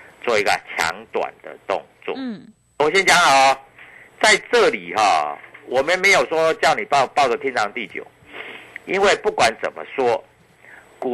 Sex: male